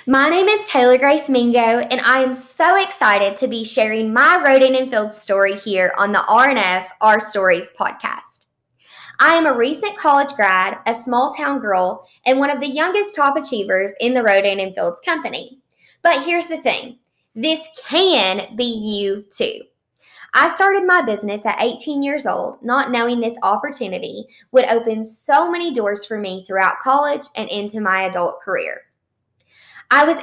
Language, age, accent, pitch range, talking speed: English, 20-39, American, 205-285 Hz, 170 wpm